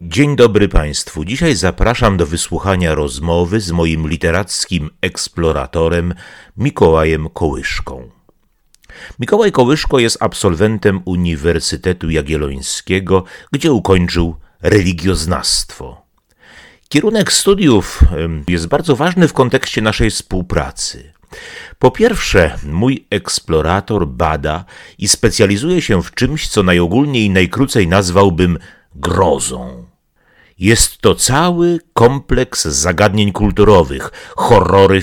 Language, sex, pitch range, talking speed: Polish, male, 85-110 Hz, 95 wpm